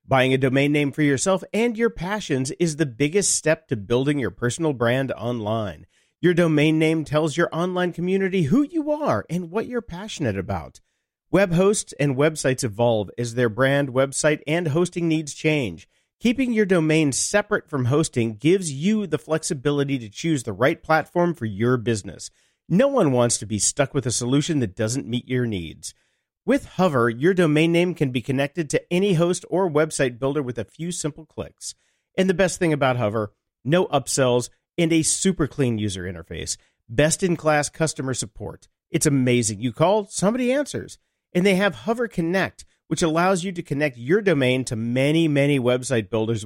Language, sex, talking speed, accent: English, male, 180 wpm, American